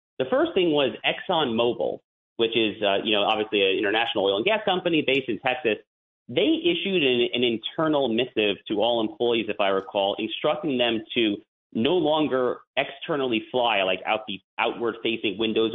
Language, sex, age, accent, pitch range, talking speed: English, male, 30-49, American, 110-145 Hz, 170 wpm